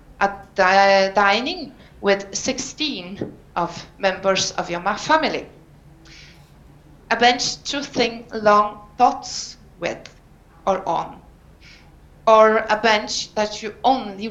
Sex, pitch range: female, 190-240 Hz